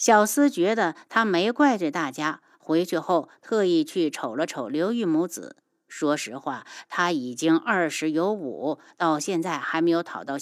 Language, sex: Chinese, female